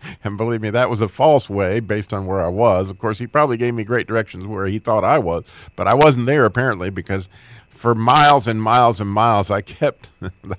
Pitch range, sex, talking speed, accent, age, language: 100-125 Hz, male, 230 wpm, American, 50-69, English